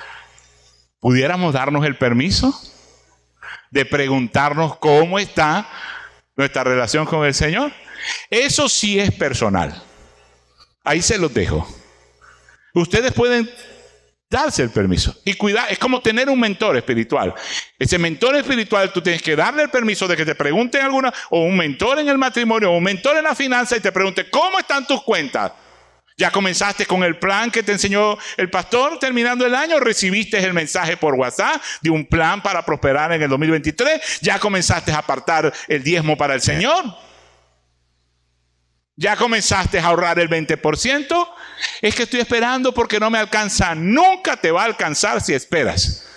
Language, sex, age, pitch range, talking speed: Spanish, male, 60-79, 135-225 Hz, 160 wpm